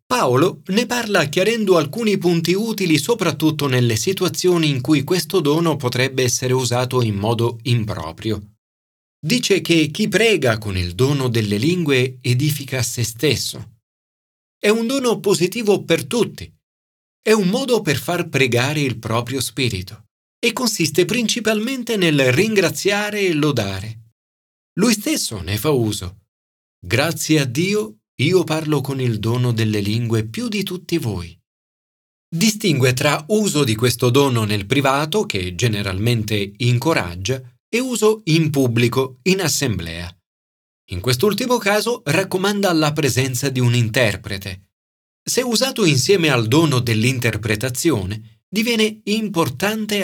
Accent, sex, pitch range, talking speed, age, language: native, male, 115-185 Hz, 130 wpm, 40-59, Italian